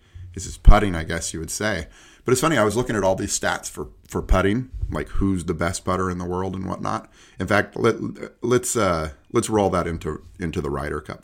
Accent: American